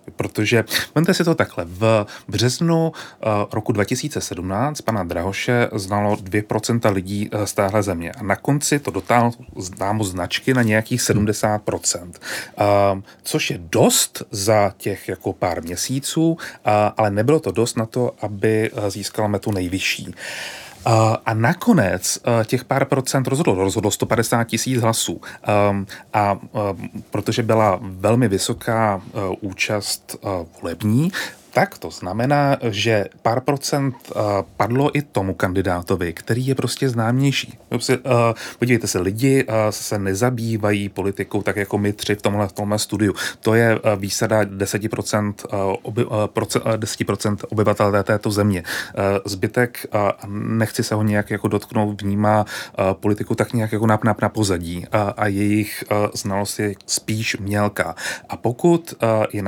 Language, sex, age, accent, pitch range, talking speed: Czech, male, 30-49, native, 100-120 Hz, 125 wpm